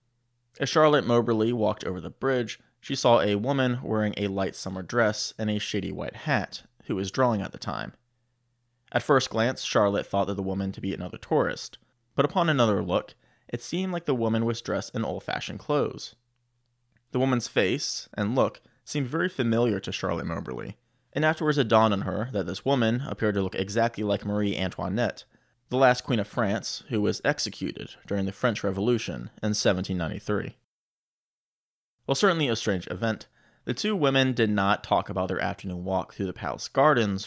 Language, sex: English, male